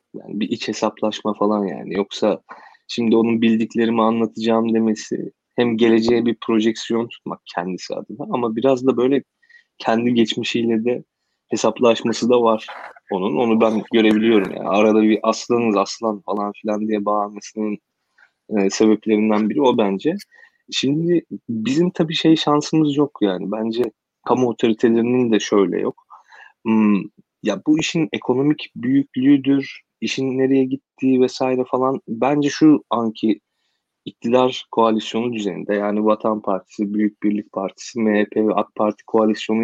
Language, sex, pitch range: Turkish, male, 110-130 Hz